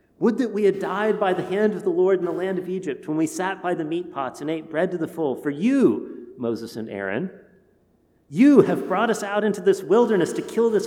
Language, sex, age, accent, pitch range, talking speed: English, male, 40-59, American, 135-205 Hz, 250 wpm